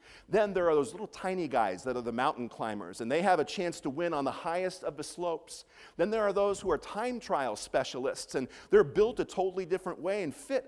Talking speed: 240 wpm